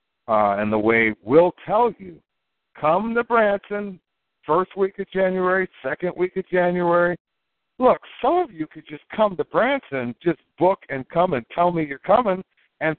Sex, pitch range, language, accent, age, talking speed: male, 140-200 Hz, English, American, 60-79, 170 wpm